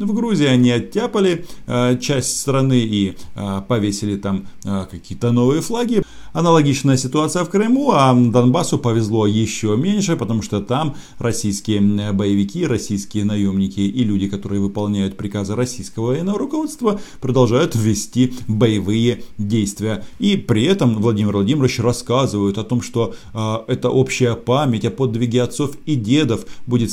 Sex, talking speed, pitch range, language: male, 140 wpm, 105-140 Hz, Russian